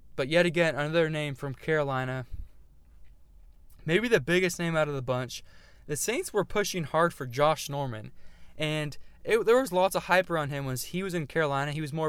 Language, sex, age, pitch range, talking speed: English, male, 20-39, 130-170 Hz, 200 wpm